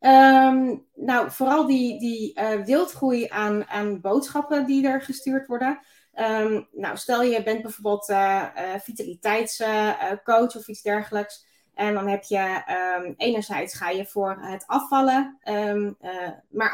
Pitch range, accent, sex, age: 210-265 Hz, Dutch, female, 20-39